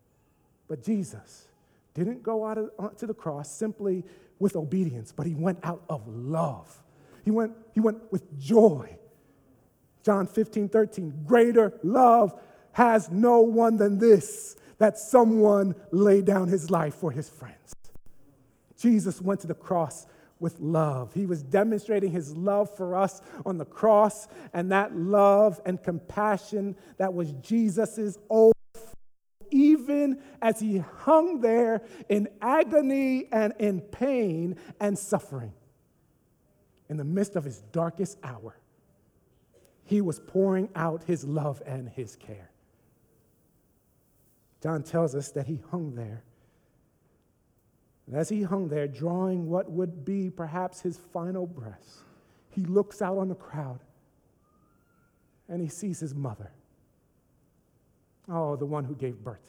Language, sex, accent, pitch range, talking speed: English, male, American, 150-210 Hz, 135 wpm